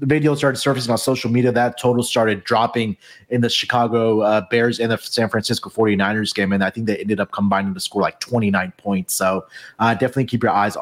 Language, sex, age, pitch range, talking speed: English, male, 30-49, 115-160 Hz, 220 wpm